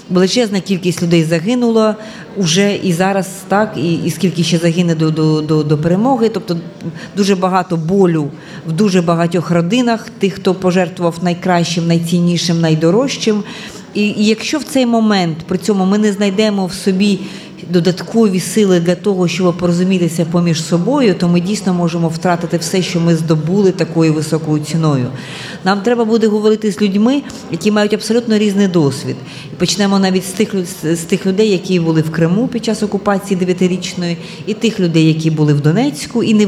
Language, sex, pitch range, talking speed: Ukrainian, female, 170-205 Hz, 165 wpm